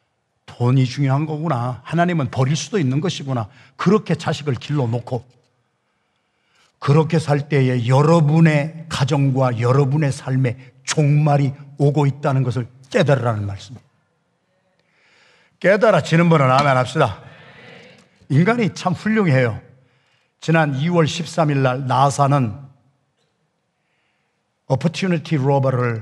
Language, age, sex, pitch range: Korean, 50-69, male, 130-165 Hz